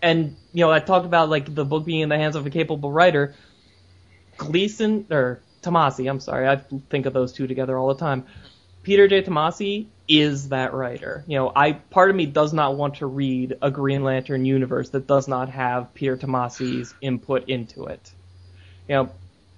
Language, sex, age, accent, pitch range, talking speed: English, male, 20-39, American, 130-150 Hz, 195 wpm